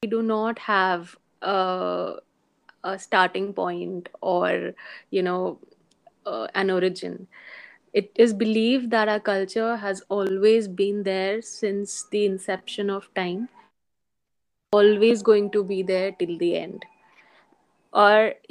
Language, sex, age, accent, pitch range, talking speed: English, female, 20-39, Indian, 190-220 Hz, 125 wpm